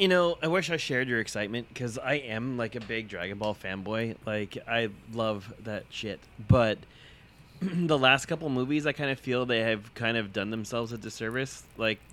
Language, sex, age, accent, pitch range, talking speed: English, male, 20-39, American, 105-125 Hz, 200 wpm